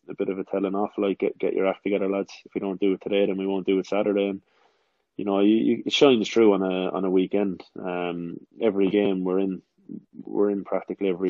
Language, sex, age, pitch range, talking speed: English, male, 20-39, 95-100 Hz, 250 wpm